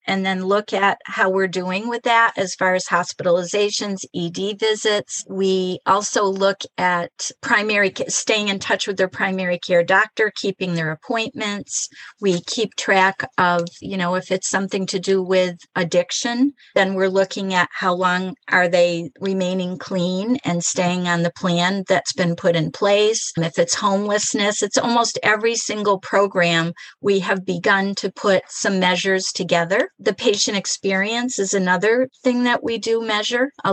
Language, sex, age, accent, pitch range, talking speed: English, female, 50-69, American, 185-220 Hz, 165 wpm